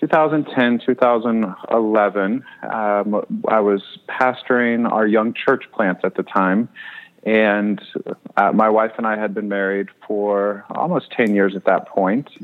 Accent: American